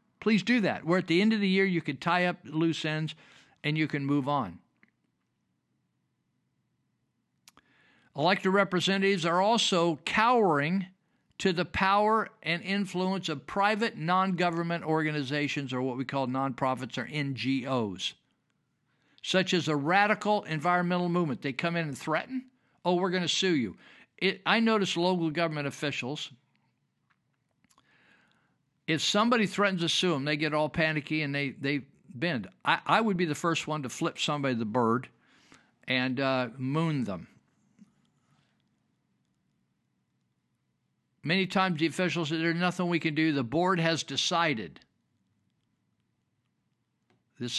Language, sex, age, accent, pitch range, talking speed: English, male, 50-69, American, 145-185 Hz, 140 wpm